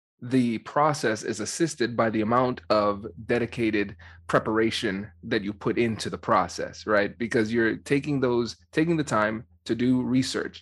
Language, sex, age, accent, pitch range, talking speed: English, male, 20-39, American, 110-130 Hz, 155 wpm